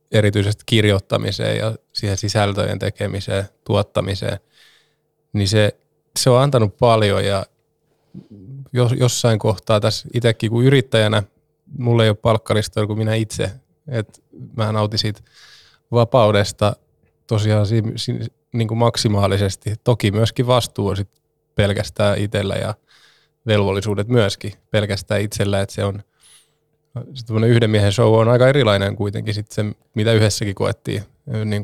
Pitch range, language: 105-125 Hz, Finnish